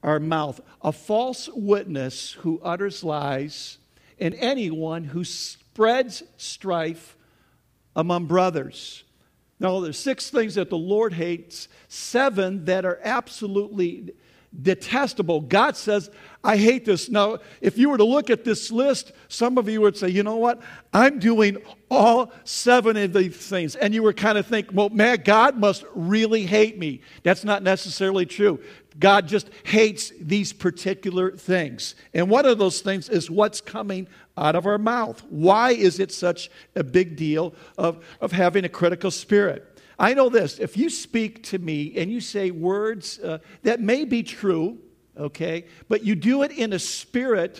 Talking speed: 165 wpm